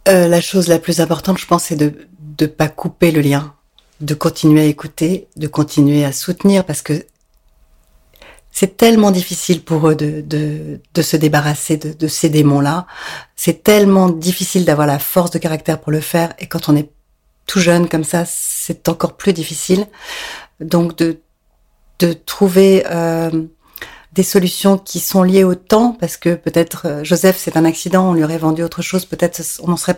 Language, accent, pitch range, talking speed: French, French, 155-180 Hz, 180 wpm